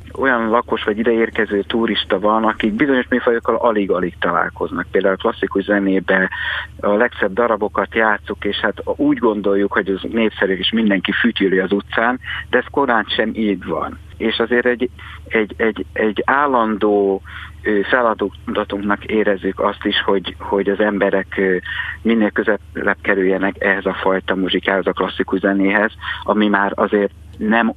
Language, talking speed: Hungarian, 145 wpm